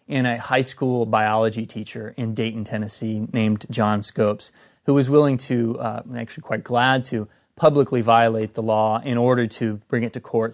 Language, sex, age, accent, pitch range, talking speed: English, male, 30-49, American, 115-135 Hz, 180 wpm